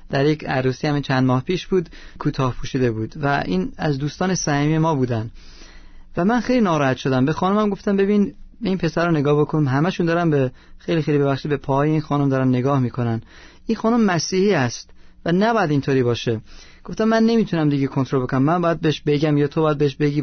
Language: Persian